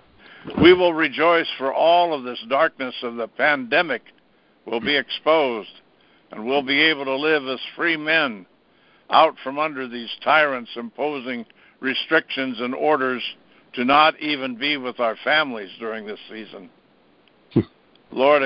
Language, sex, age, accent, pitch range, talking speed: English, male, 60-79, American, 115-140 Hz, 140 wpm